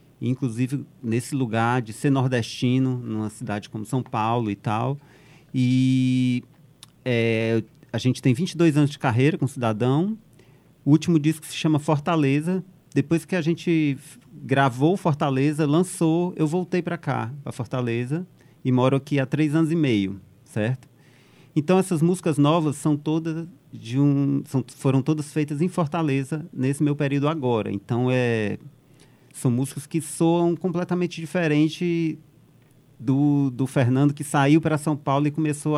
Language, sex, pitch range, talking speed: Portuguese, male, 120-150 Hz, 150 wpm